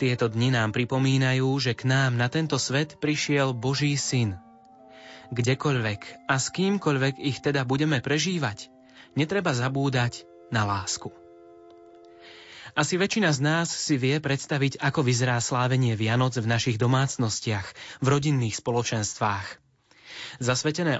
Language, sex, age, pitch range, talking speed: Slovak, male, 20-39, 120-150 Hz, 125 wpm